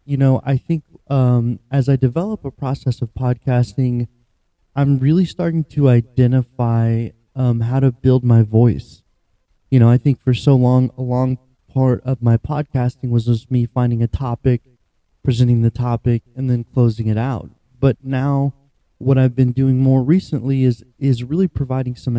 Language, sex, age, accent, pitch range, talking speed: English, male, 30-49, American, 115-135 Hz, 170 wpm